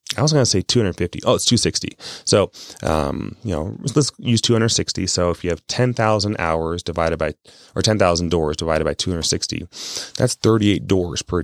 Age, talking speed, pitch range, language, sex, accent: 30-49, 180 wpm, 85-105 Hz, English, male, American